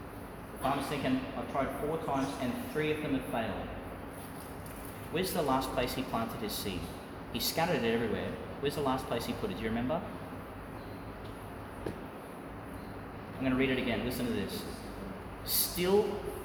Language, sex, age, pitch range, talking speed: English, male, 30-49, 95-130 Hz, 160 wpm